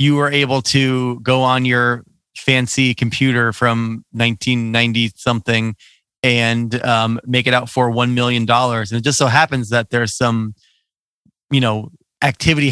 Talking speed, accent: 150 wpm, American